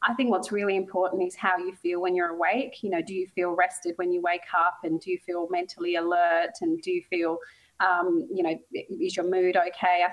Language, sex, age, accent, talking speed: English, female, 30-49, Australian, 235 wpm